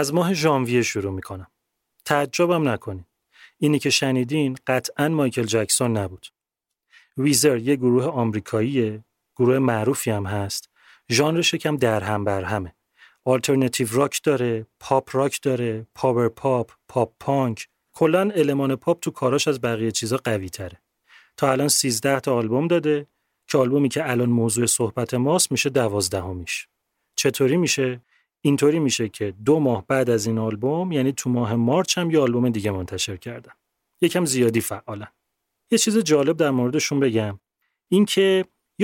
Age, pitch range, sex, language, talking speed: 30-49, 115-140 Hz, male, Persian, 140 wpm